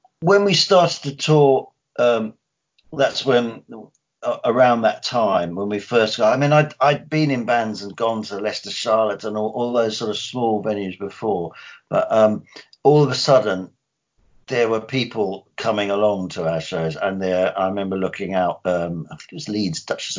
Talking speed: 190 wpm